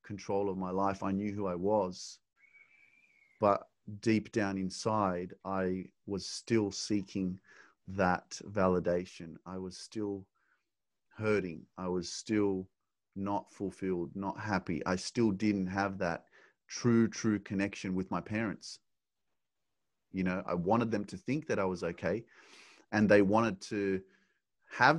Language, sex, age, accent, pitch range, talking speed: English, male, 30-49, Australian, 90-105 Hz, 135 wpm